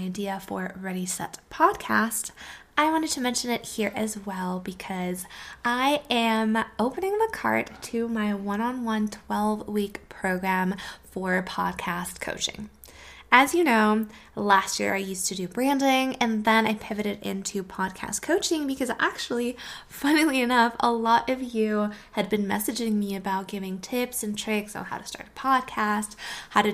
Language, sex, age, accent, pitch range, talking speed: English, female, 20-39, American, 195-250 Hz, 155 wpm